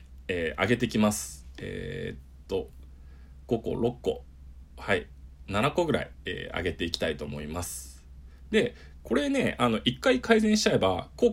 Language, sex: Japanese, male